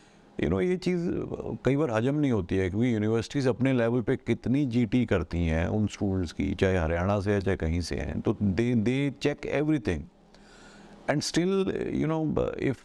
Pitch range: 105-135 Hz